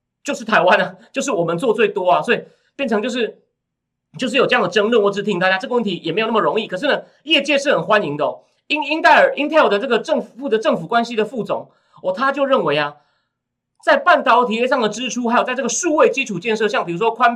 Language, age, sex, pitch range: Chinese, 30-49, male, 195-260 Hz